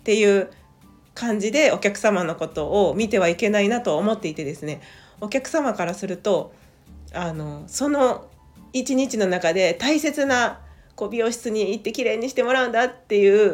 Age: 40-59